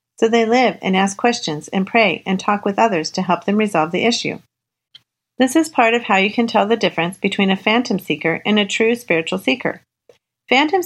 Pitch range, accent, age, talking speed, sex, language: 185-235 Hz, American, 40-59, 210 wpm, female, English